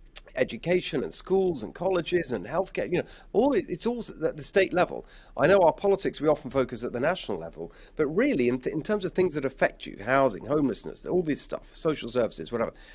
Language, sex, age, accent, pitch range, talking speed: English, male, 40-59, British, 120-170 Hz, 210 wpm